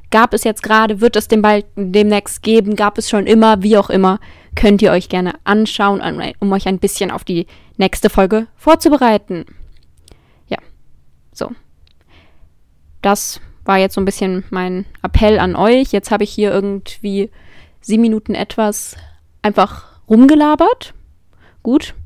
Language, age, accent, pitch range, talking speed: German, 20-39, German, 195-260 Hz, 145 wpm